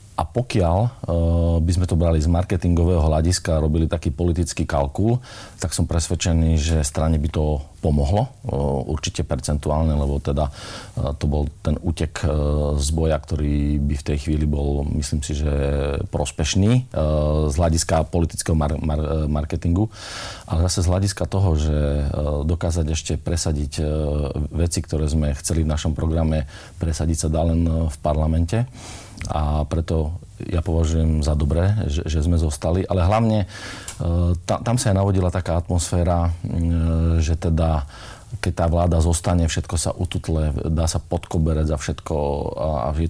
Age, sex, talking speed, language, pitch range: 40-59, male, 145 wpm, Slovak, 80-90 Hz